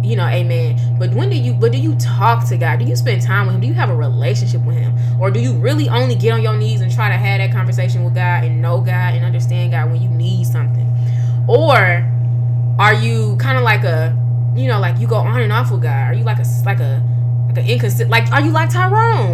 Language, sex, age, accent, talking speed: English, female, 20-39, American, 260 wpm